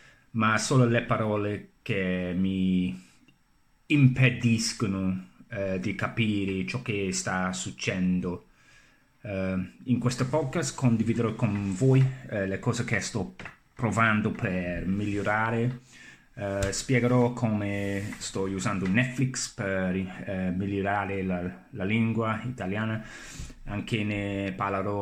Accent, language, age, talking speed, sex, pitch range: native, Italian, 30-49, 110 wpm, male, 95-120 Hz